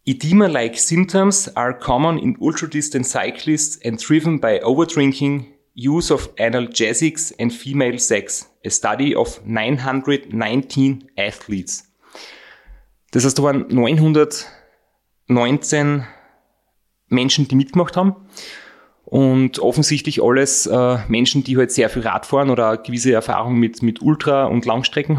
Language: German